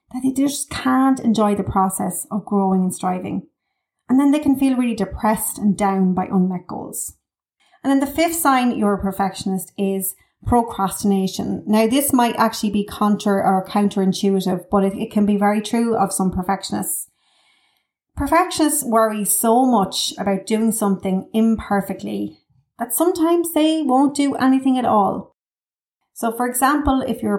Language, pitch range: English, 195-255 Hz